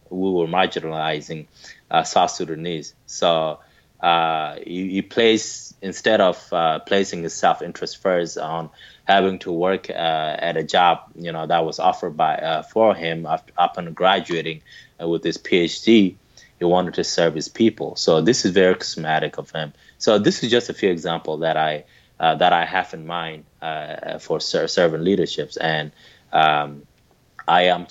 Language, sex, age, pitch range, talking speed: English, male, 20-39, 80-95 Hz, 170 wpm